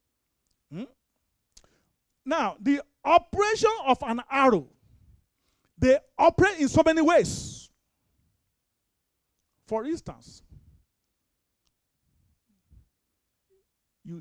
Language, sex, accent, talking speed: English, male, Nigerian, 70 wpm